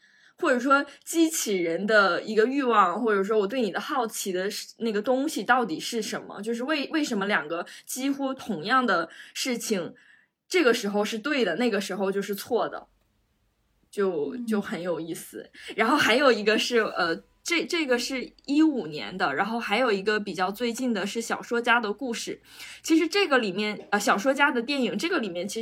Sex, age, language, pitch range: female, 20-39, Chinese, 195-245 Hz